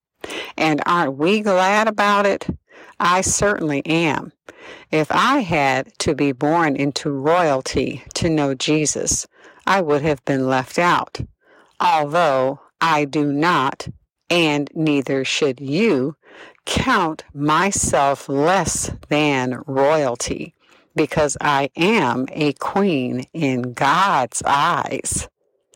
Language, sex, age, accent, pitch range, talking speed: English, female, 50-69, American, 145-200 Hz, 110 wpm